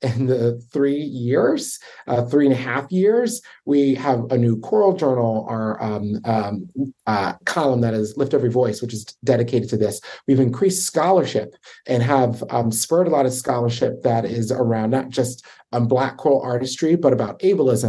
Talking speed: 180 wpm